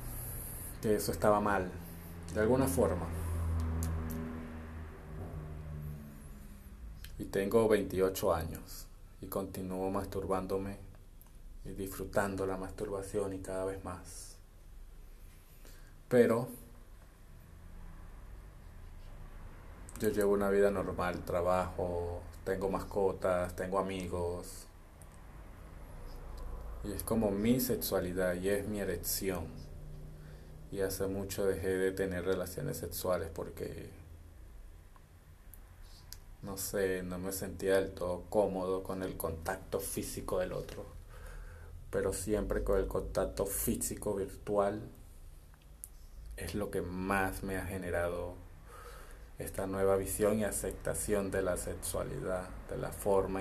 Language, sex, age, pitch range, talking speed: Spanish, male, 30-49, 80-95 Hz, 100 wpm